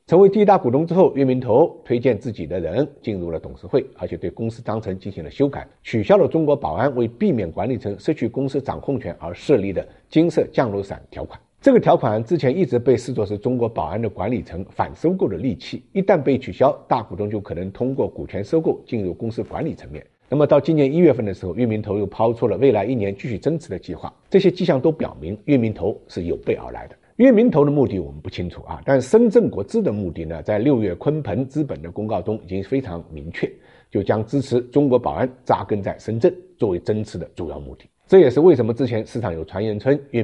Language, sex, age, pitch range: Chinese, male, 50-69, 100-140 Hz